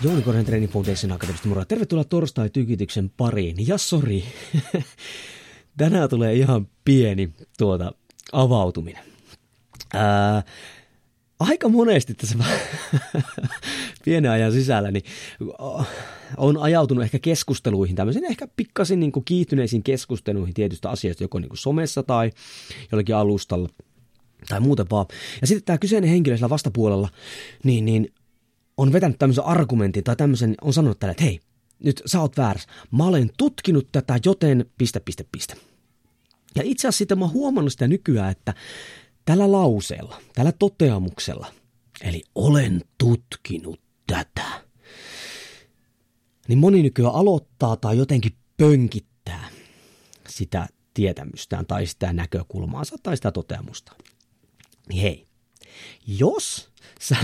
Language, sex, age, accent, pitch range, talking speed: Finnish, male, 30-49, native, 105-145 Hz, 115 wpm